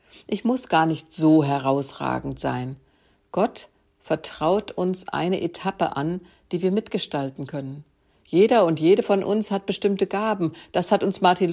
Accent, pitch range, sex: German, 150-195 Hz, female